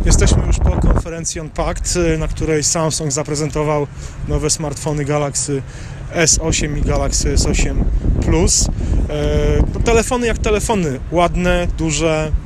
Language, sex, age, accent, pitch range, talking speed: Polish, male, 30-49, native, 135-160 Hz, 105 wpm